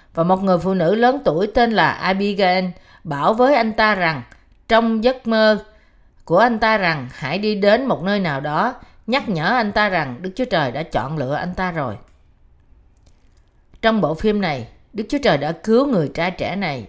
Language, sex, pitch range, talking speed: Vietnamese, female, 155-230 Hz, 200 wpm